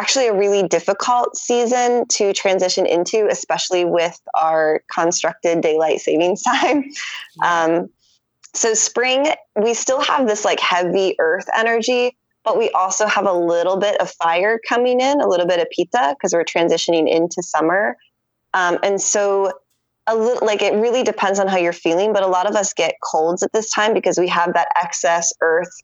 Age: 20-39